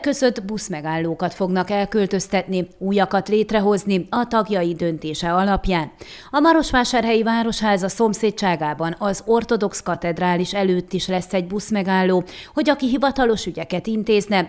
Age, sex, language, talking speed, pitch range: 30-49, female, Hungarian, 110 wpm, 180-225 Hz